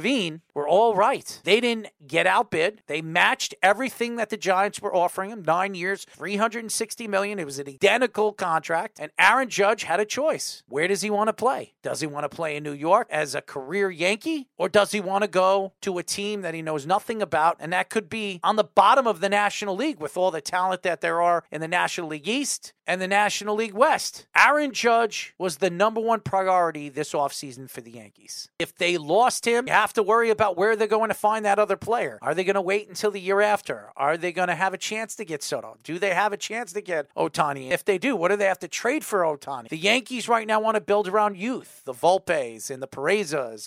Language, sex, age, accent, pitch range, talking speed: English, male, 40-59, American, 170-225 Hz, 235 wpm